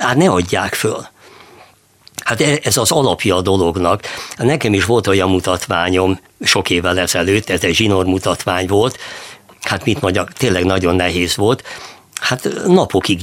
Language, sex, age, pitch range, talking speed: Hungarian, male, 60-79, 90-115 Hz, 140 wpm